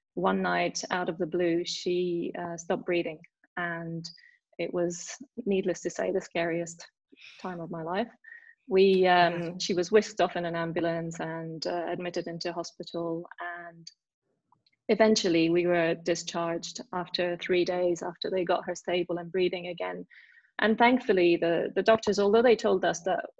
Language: English